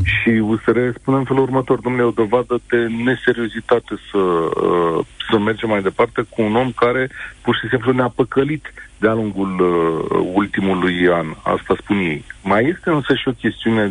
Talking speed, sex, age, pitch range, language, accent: 165 wpm, male, 50-69, 95-125 Hz, Romanian, native